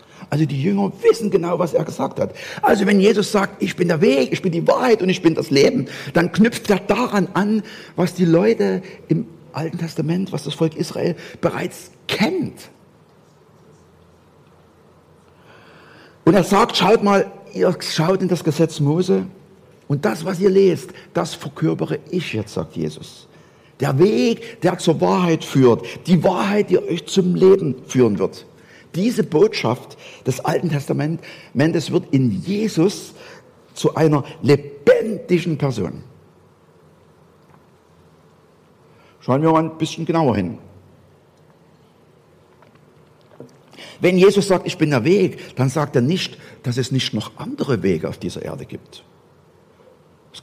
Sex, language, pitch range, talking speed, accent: male, German, 145-195 Hz, 145 wpm, German